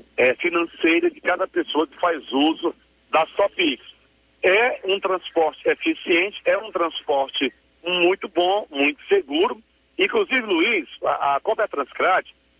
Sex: male